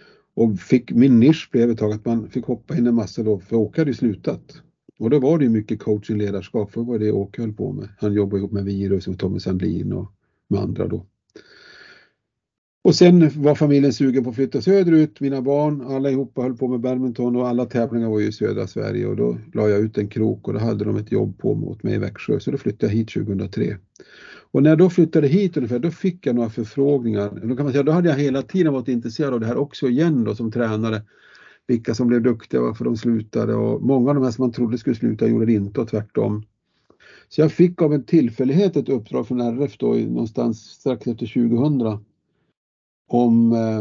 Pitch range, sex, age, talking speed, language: 105-140 Hz, male, 50-69, 230 wpm, Swedish